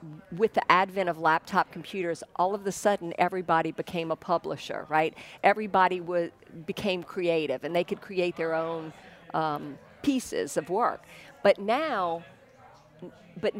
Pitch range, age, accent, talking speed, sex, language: 170-210 Hz, 50-69, American, 140 wpm, female, English